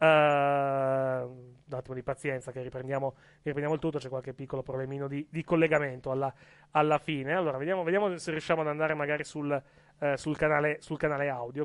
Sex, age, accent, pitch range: male, 30-49, native, 135-170 Hz